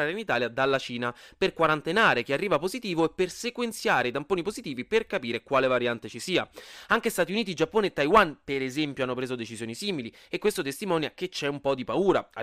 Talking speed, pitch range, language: 210 wpm, 125-175 Hz, Italian